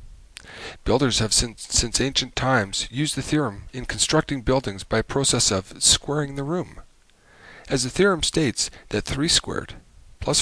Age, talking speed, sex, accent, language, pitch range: 40-59, 150 wpm, male, American, English, 100-135 Hz